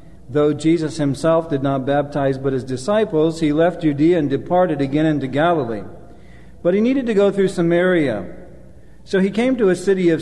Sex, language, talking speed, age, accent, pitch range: male, English, 180 wpm, 50-69, American, 150-185 Hz